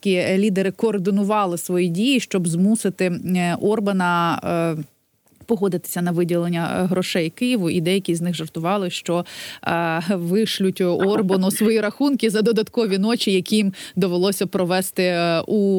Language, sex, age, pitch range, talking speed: Ukrainian, female, 20-39, 175-225 Hz, 115 wpm